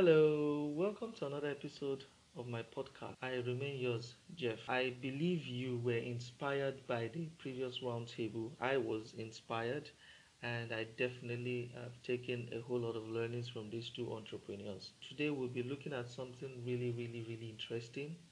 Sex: male